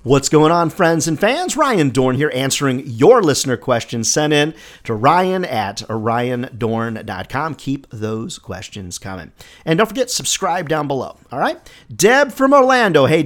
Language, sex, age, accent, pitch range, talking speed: English, male, 40-59, American, 115-160 Hz, 160 wpm